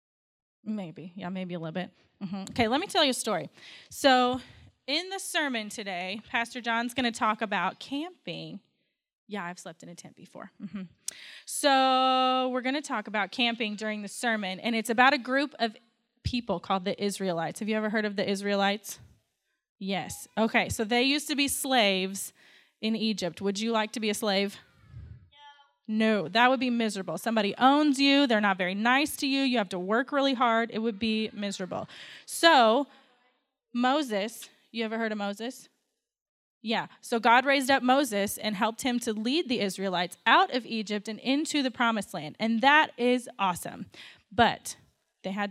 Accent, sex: American, female